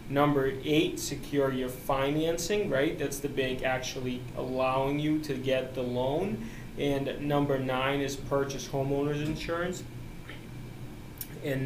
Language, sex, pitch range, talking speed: English, male, 125-140 Hz, 125 wpm